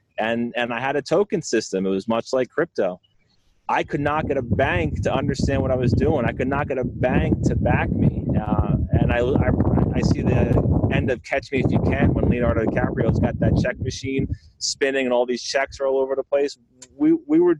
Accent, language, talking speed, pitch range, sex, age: American, English, 225 wpm, 120-150 Hz, male, 30-49